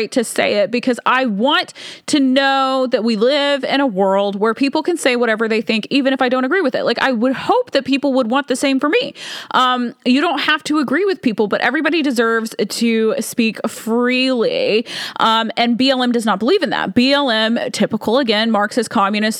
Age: 20-39